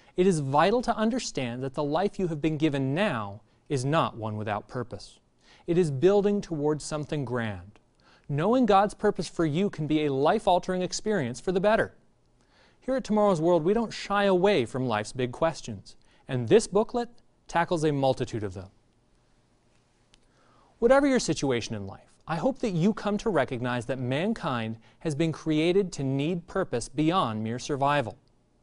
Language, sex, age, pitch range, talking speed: English, male, 30-49, 125-195 Hz, 170 wpm